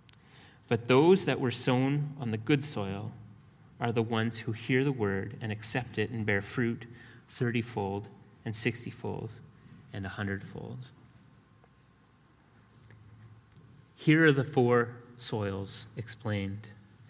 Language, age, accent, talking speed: English, 30-49, American, 120 wpm